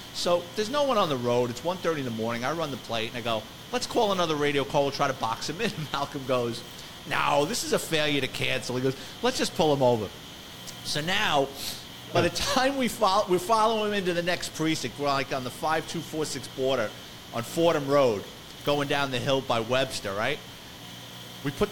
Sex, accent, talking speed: male, American, 220 wpm